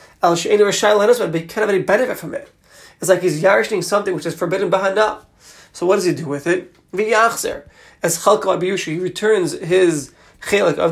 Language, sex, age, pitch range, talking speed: English, male, 30-49, 155-195 Hz, 170 wpm